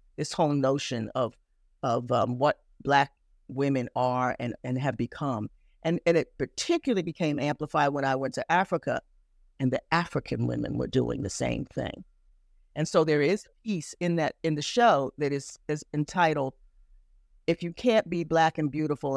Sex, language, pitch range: female, English, 140-175 Hz